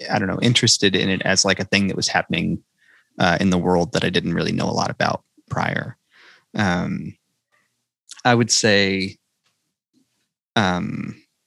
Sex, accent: male, American